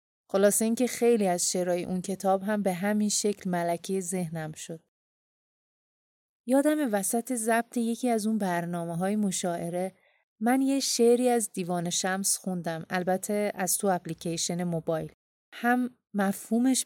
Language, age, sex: Persian, 30-49, female